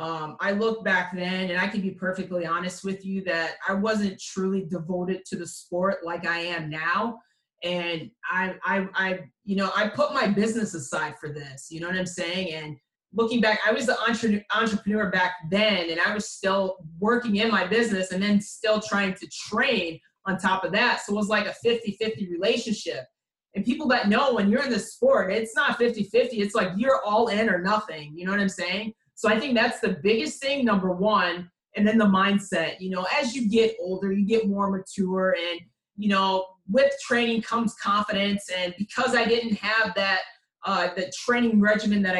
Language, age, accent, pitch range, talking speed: English, 20-39, American, 180-220 Hz, 205 wpm